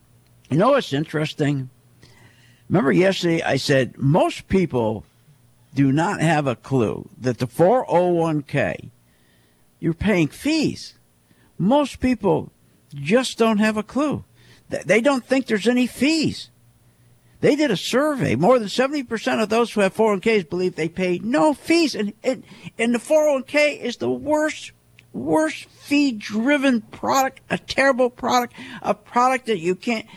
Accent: American